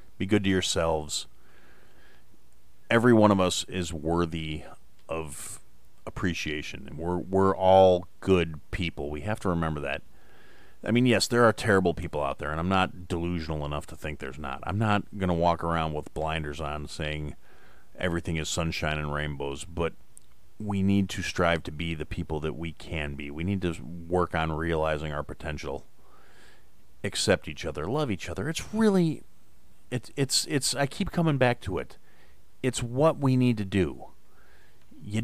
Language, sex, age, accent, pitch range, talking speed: English, male, 30-49, American, 80-110 Hz, 170 wpm